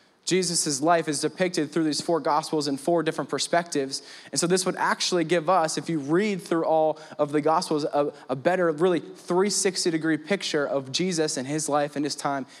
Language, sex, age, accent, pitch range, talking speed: English, male, 20-39, American, 150-175 Hz, 200 wpm